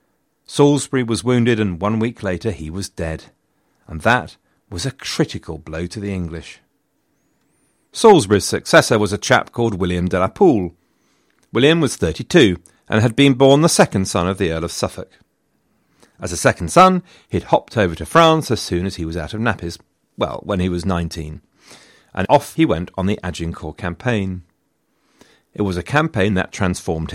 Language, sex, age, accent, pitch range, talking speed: English, male, 40-59, British, 90-125 Hz, 175 wpm